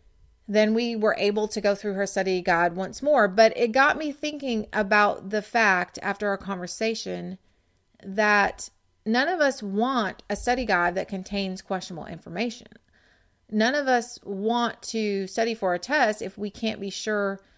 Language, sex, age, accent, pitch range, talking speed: English, female, 30-49, American, 185-225 Hz, 165 wpm